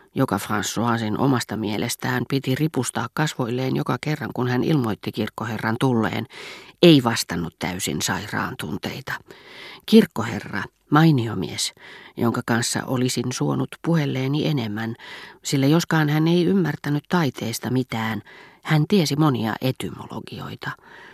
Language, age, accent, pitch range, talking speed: Finnish, 40-59, native, 115-155 Hz, 110 wpm